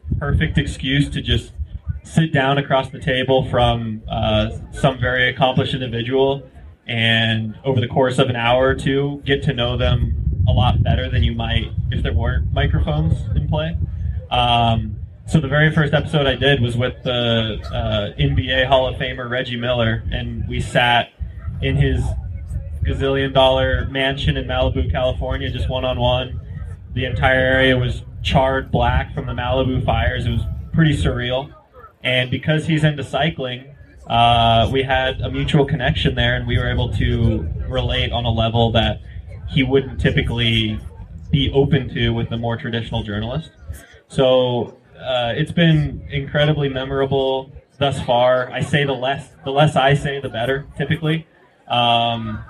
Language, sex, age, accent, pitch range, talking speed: English, male, 20-39, American, 105-135 Hz, 155 wpm